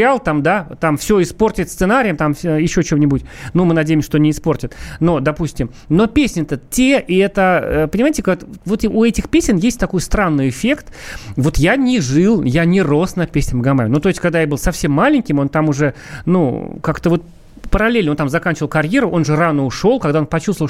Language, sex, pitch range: Russian, male, 150-210 Hz